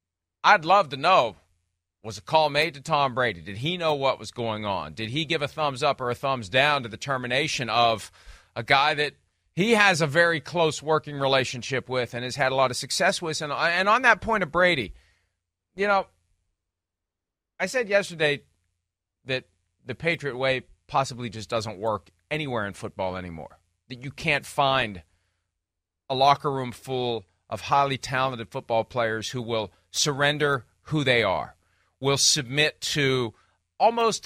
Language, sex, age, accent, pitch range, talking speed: English, male, 40-59, American, 110-160 Hz, 170 wpm